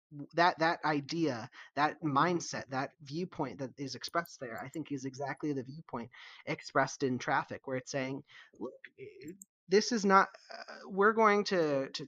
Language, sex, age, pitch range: English, male, 30-49, 130-160 Hz